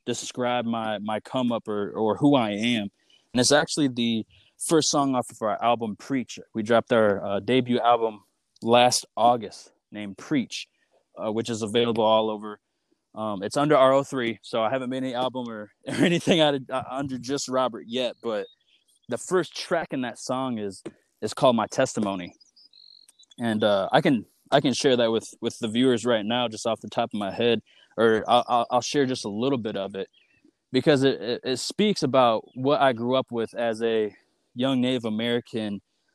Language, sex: English, male